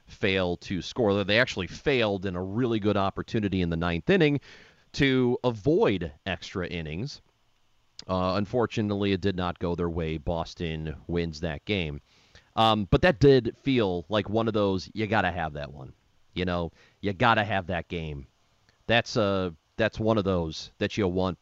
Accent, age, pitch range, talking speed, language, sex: American, 40-59, 90-120 Hz, 170 wpm, English, male